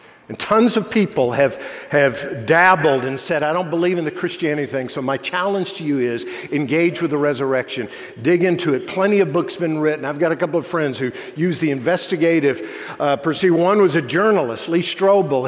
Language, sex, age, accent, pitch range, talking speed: English, male, 50-69, American, 135-180 Hz, 205 wpm